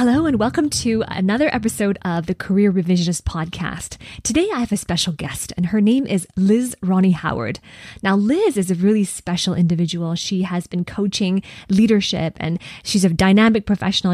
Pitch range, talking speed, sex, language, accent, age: 175-210 Hz, 175 wpm, female, English, American, 20-39